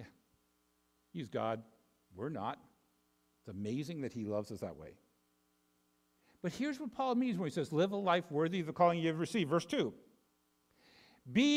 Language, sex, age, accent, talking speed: English, male, 50-69, American, 170 wpm